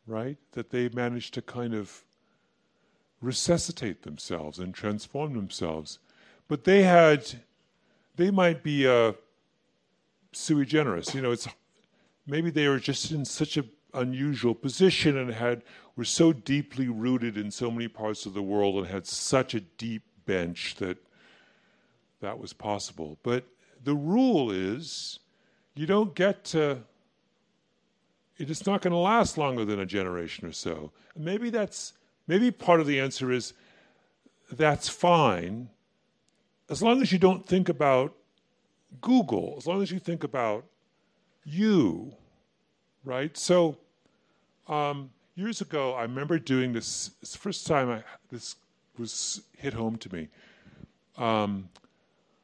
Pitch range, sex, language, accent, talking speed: 115-170 Hz, female, English, American, 140 wpm